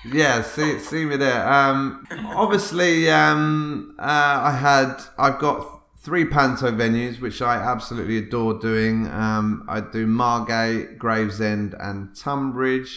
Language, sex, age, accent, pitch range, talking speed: English, male, 30-49, British, 110-130 Hz, 130 wpm